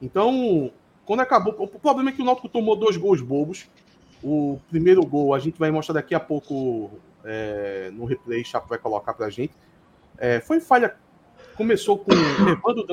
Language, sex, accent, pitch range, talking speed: Portuguese, male, Brazilian, 150-225 Hz, 180 wpm